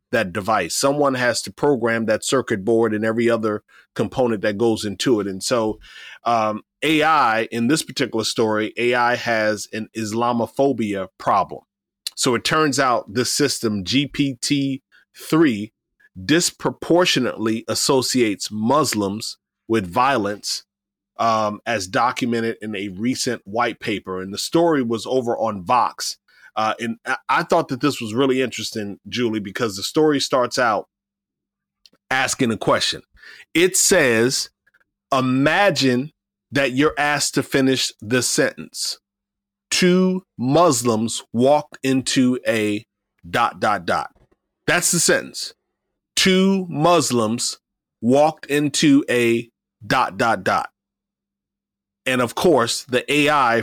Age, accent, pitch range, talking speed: 30-49, American, 110-140 Hz, 120 wpm